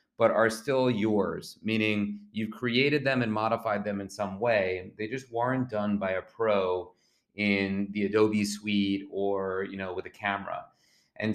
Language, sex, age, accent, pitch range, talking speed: English, male, 30-49, American, 100-120 Hz, 160 wpm